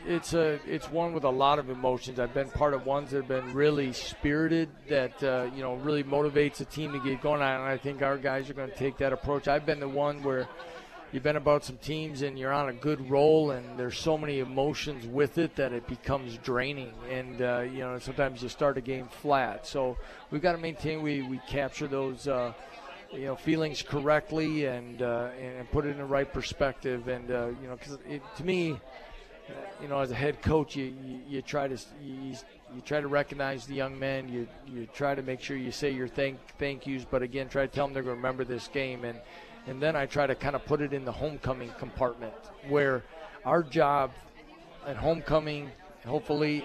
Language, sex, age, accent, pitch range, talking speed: English, male, 40-59, American, 125-145 Hz, 220 wpm